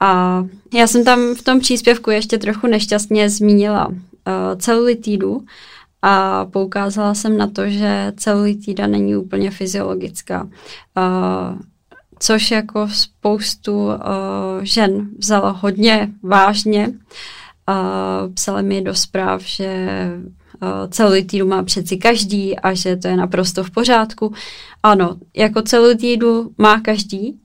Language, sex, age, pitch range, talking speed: Czech, female, 20-39, 180-210 Hz, 120 wpm